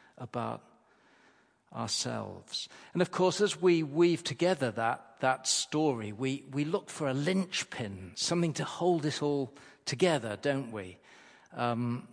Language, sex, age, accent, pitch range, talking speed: English, male, 50-69, British, 115-145 Hz, 135 wpm